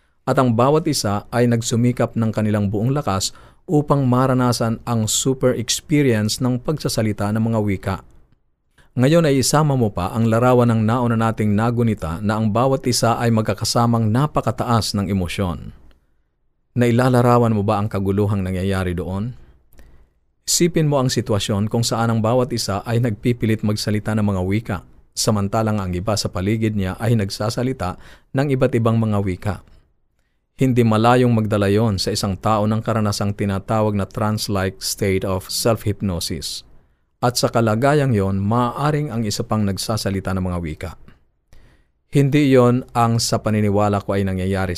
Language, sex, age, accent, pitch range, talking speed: Filipino, male, 40-59, native, 95-120 Hz, 145 wpm